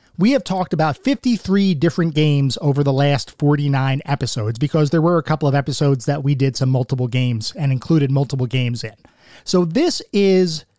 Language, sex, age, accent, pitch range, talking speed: English, male, 30-49, American, 130-180 Hz, 185 wpm